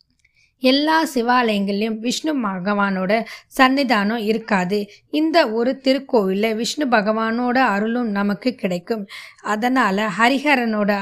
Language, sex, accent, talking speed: Tamil, female, native, 85 wpm